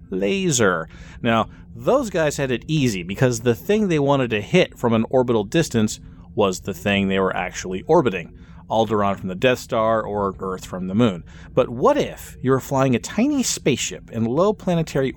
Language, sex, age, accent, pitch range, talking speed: English, male, 30-49, American, 105-150 Hz, 185 wpm